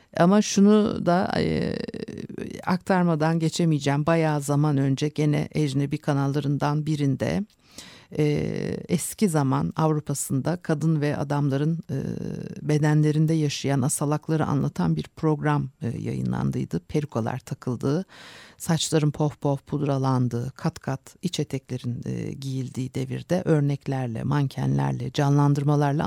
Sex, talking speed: female, 90 wpm